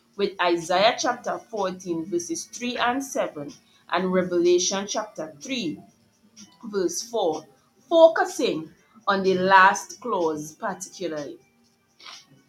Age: 30-49